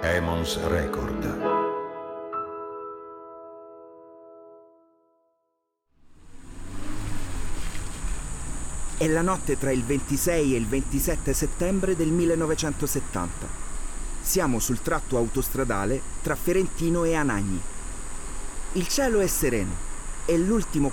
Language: Italian